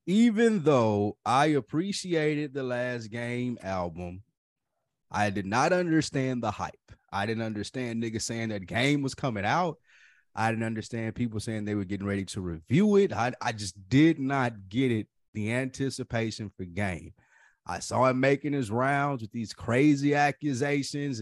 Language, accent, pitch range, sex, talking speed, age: English, American, 110-145 Hz, male, 160 wpm, 30-49